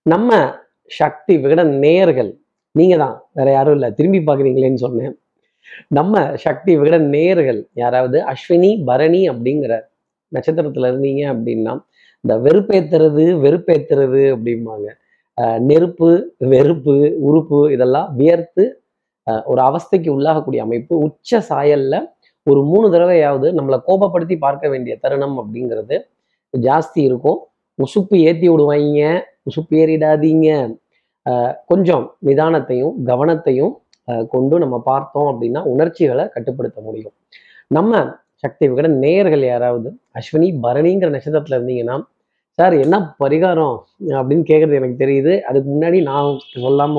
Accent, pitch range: native, 130-165 Hz